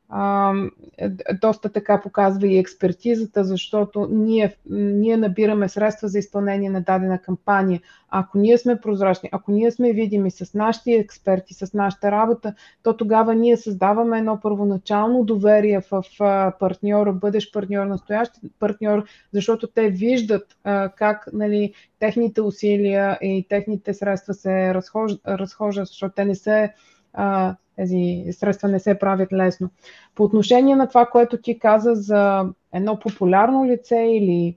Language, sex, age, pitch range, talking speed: Bulgarian, female, 20-39, 195-220 Hz, 135 wpm